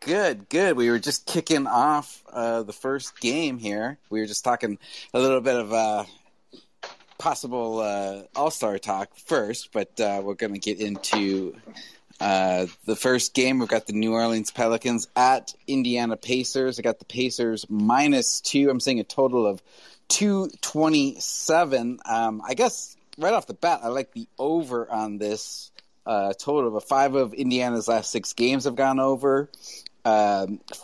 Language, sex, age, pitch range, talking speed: English, male, 30-49, 105-130 Hz, 165 wpm